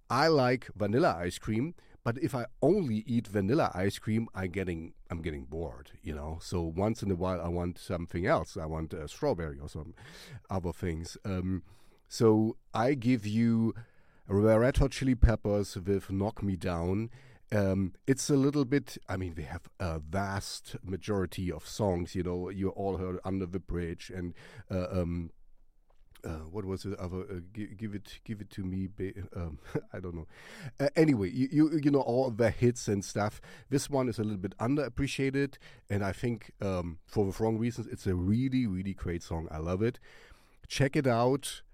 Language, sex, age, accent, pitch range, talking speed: English, male, 40-59, German, 90-115 Hz, 190 wpm